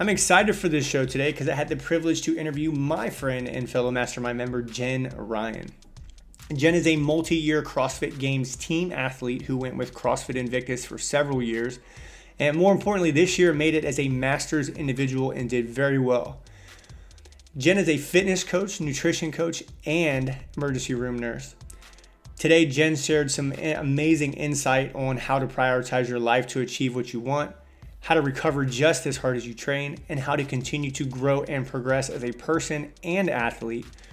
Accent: American